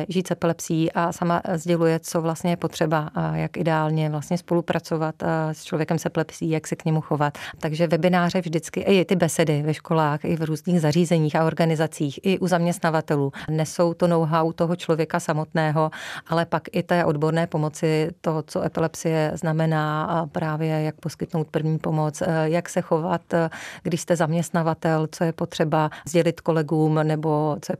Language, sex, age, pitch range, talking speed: Czech, female, 30-49, 160-175 Hz, 165 wpm